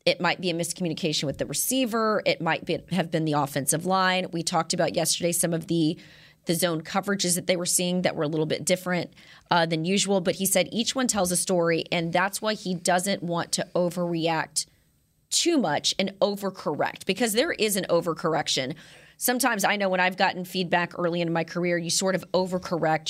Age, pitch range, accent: 20-39, 170-195 Hz, American